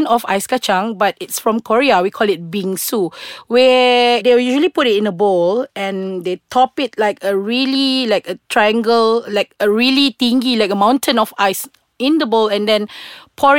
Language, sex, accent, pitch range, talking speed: English, female, Malaysian, 200-270 Hz, 195 wpm